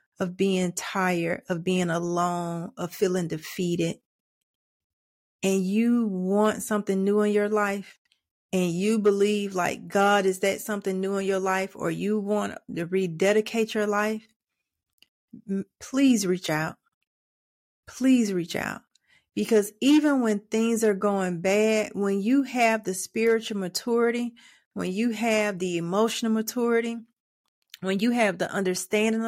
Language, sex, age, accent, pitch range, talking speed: English, female, 30-49, American, 185-225 Hz, 135 wpm